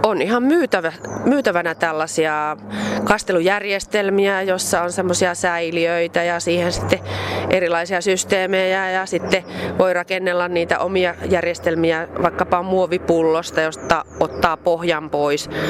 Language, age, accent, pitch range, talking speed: Finnish, 30-49, native, 160-190 Hz, 105 wpm